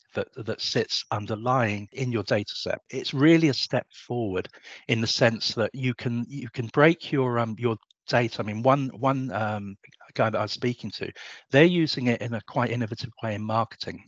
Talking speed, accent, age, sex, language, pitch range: 200 wpm, British, 50-69, male, English, 110-135 Hz